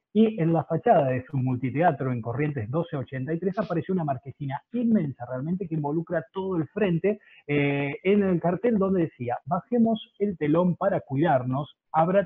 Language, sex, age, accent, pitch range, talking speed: Spanish, male, 30-49, Argentinian, 130-170 Hz, 155 wpm